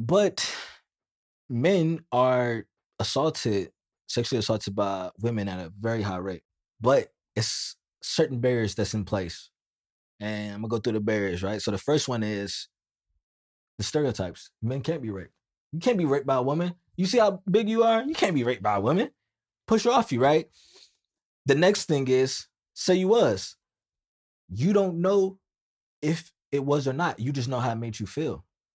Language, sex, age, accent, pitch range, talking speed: English, male, 20-39, American, 110-165 Hz, 180 wpm